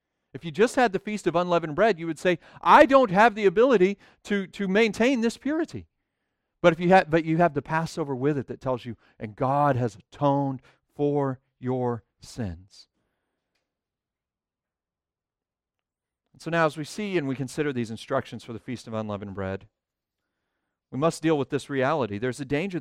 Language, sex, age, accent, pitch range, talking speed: English, male, 40-59, American, 120-160 Hz, 180 wpm